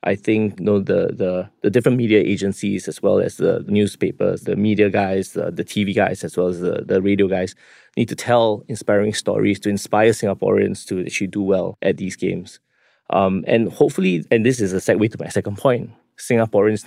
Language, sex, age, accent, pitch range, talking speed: English, male, 20-39, Malaysian, 95-110 Hz, 205 wpm